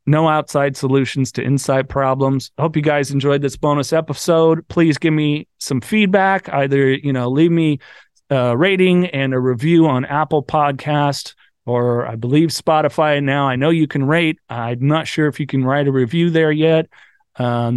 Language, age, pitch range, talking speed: English, 40-59, 130-155 Hz, 180 wpm